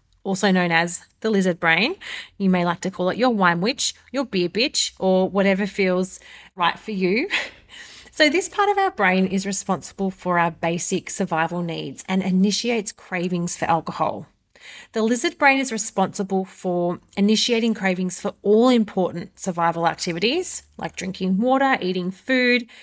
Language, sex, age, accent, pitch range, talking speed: English, female, 30-49, Australian, 180-220 Hz, 160 wpm